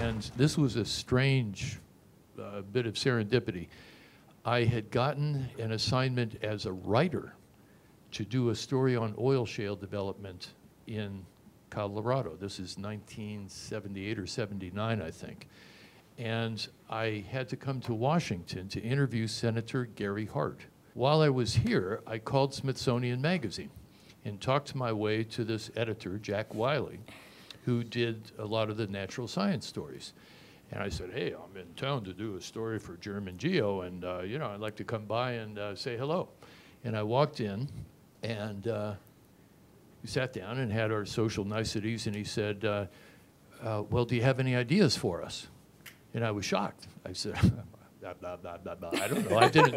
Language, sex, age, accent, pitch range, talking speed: English, male, 60-79, American, 105-125 Hz, 165 wpm